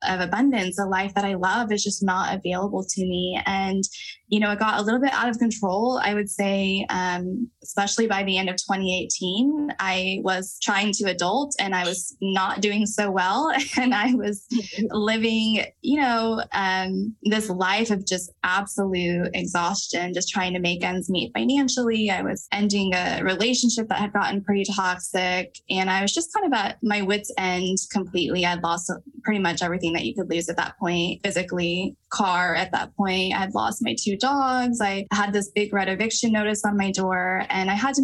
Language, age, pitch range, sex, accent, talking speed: English, 10-29, 190-230 Hz, female, American, 195 wpm